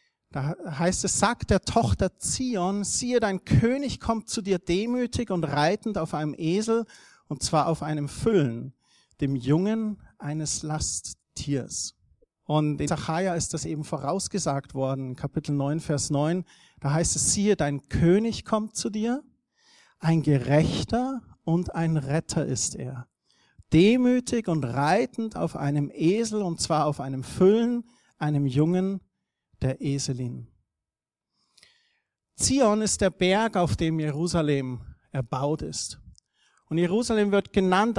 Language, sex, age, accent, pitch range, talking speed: German, male, 50-69, German, 145-200 Hz, 135 wpm